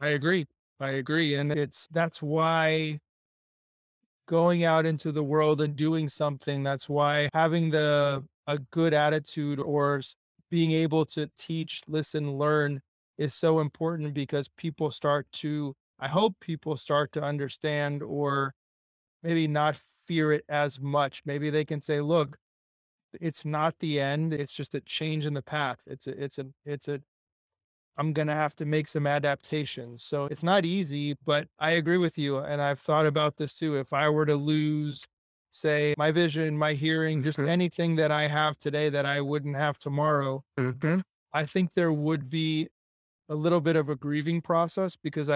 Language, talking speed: English, 170 wpm